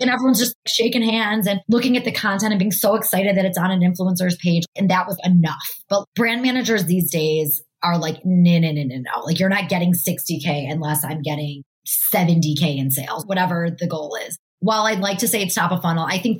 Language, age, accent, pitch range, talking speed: English, 20-39, American, 150-190 Hz, 235 wpm